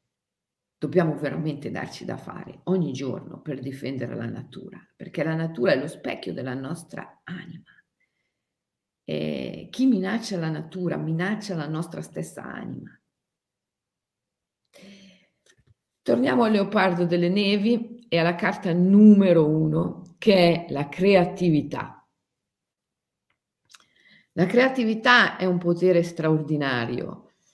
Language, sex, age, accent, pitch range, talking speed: Italian, female, 50-69, native, 150-190 Hz, 105 wpm